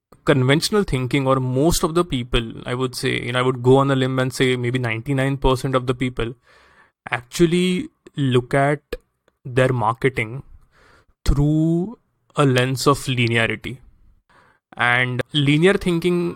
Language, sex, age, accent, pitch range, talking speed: English, male, 20-39, Indian, 130-150 Hz, 145 wpm